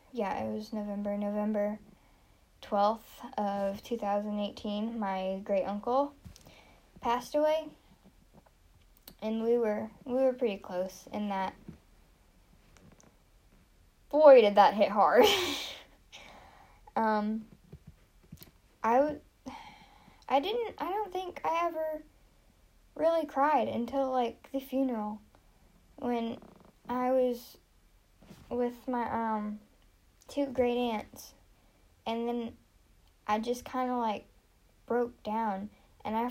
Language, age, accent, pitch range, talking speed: English, 10-29, American, 205-255 Hz, 100 wpm